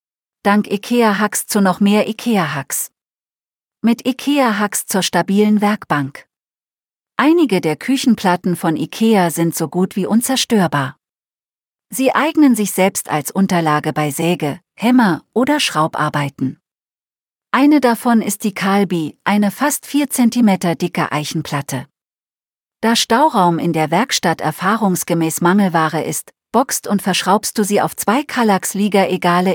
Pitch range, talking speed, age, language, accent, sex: 165-220 Hz, 125 wpm, 40-59, German, German, female